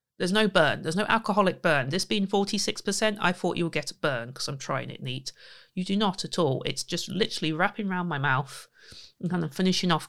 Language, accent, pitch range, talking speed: English, British, 155-210 Hz, 230 wpm